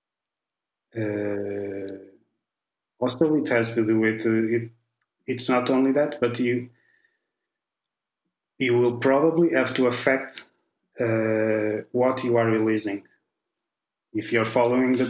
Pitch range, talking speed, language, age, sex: 110-130 Hz, 125 wpm, English, 20-39, male